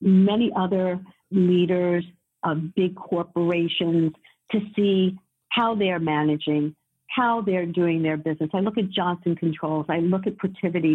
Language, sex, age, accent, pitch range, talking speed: English, female, 50-69, American, 160-210 Hz, 135 wpm